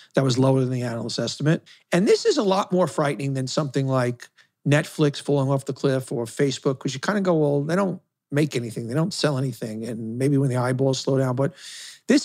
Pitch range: 135-170 Hz